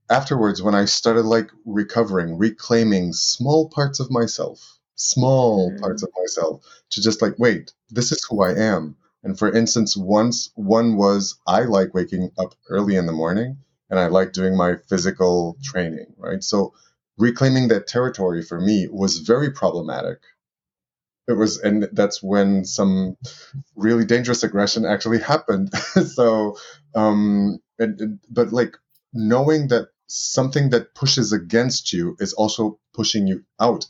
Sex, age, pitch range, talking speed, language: male, 30-49, 95-115 Hz, 145 wpm, English